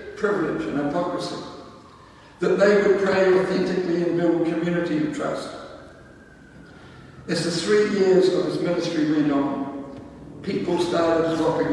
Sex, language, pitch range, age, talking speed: male, English, 155-200 Hz, 60-79, 130 wpm